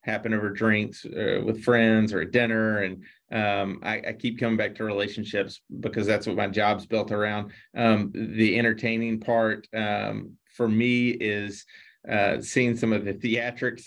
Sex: male